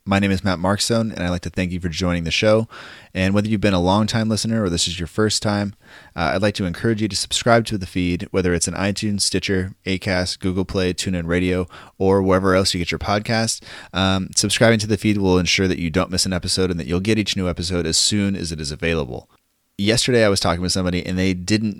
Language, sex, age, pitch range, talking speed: English, male, 30-49, 85-100 Hz, 250 wpm